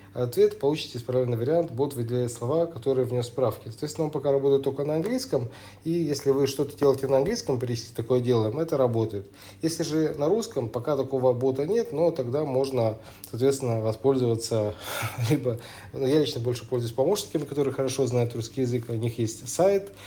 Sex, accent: male, native